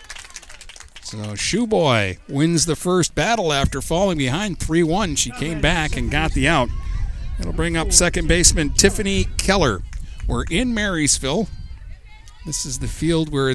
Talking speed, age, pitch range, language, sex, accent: 140 wpm, 50-69, 115-170 Hz, English, male, American